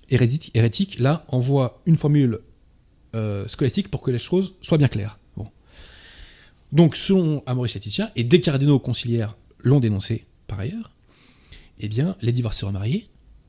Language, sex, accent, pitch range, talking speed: French, male, French, 105-145 Hz, 140 wpm